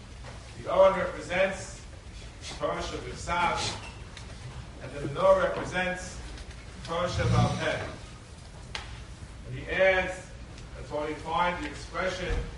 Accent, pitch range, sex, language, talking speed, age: American, 150-190 Hz, male, English, 115 wpm, 40-59